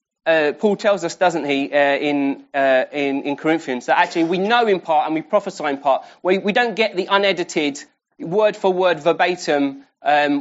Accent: British